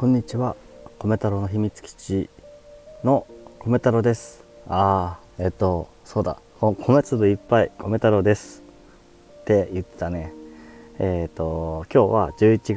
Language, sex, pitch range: Japanese, male, 90-115 Hz